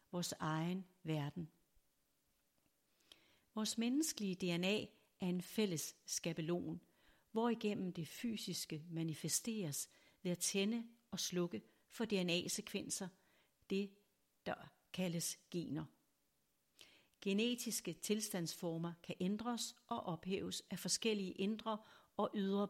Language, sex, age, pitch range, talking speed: Danish, female, 60-79, 170-215 Hz, 100 wpm